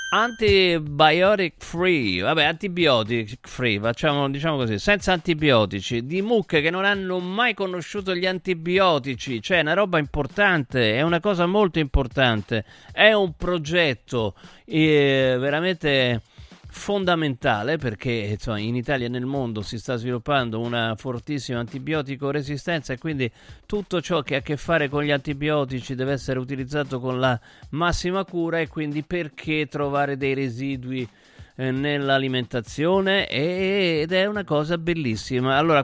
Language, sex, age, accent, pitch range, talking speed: Italian, male, 40-59, native, 130-175 Hz, 135 wpm